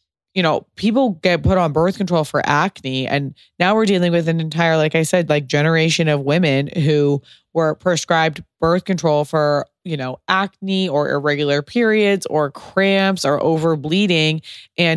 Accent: American